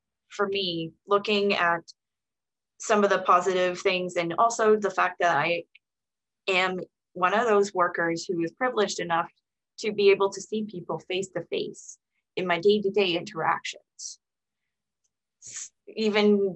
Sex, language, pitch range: female, English, 165-195 Hz